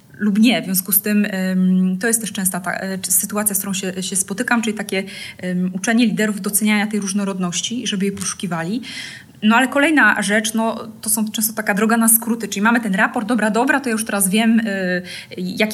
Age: 20-39